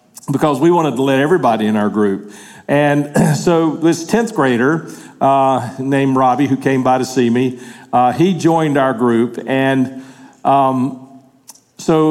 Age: 50-69